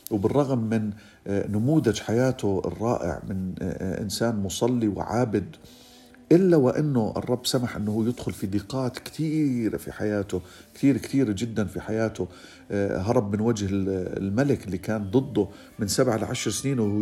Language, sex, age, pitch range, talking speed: Arabic, male, 50-69, 100-130 Hz, 130 wpm